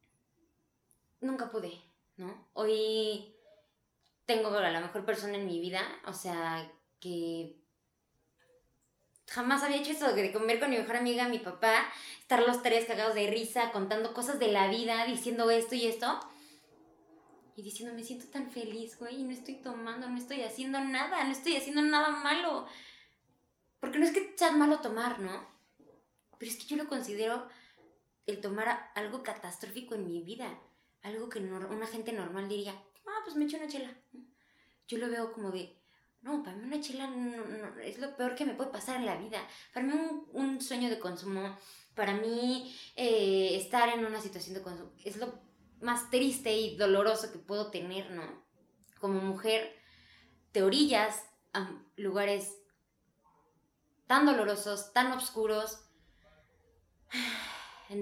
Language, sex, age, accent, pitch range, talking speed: Spanish, female, 20-39, Mexican, 200-255 Hz, 160 wpm